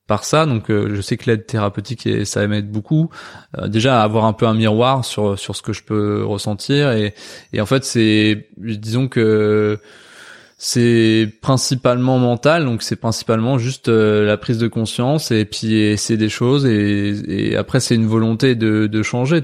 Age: 20-39